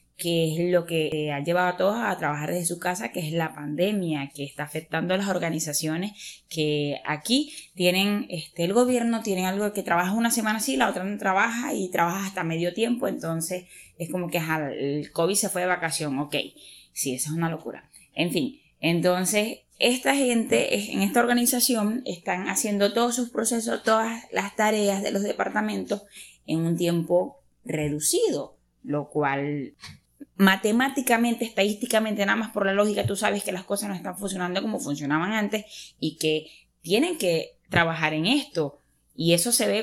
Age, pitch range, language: 10-29, 160-210 Hz, Spanish